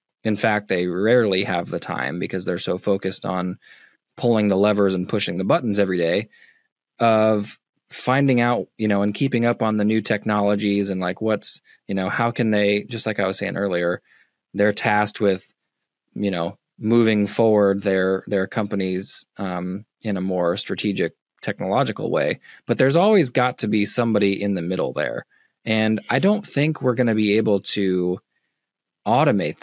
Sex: male